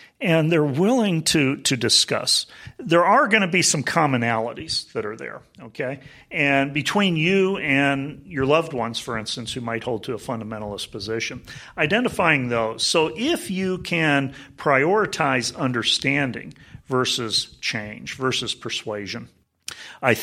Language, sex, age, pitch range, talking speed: English, male, 40-59, 115-155 Hz, 135 wpm